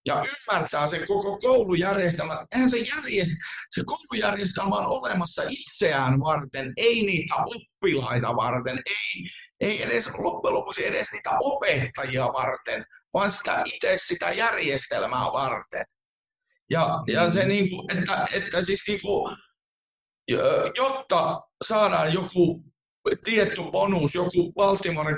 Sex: male